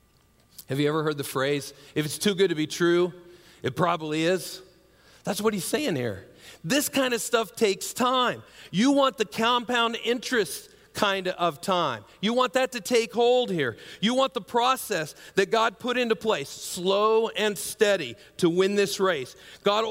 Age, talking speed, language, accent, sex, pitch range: 40-59, 180 wpm, English, American, male, 180-240 Hz